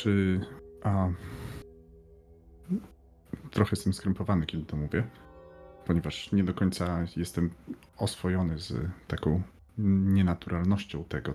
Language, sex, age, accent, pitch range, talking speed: Polish, male, 30-49, native, 80-105 Hz, 95 wpm